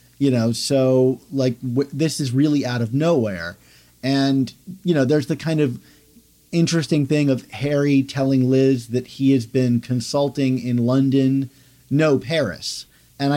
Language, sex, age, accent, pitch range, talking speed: English, male, 40-59, American, 120-140 Hz, 150 wpm